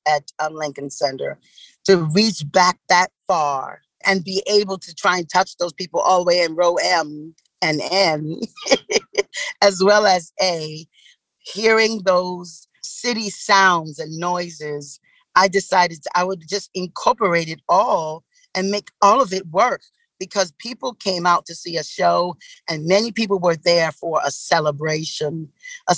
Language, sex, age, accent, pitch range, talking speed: English, female, 40-59, American, 160-200 Hz, 150 wpm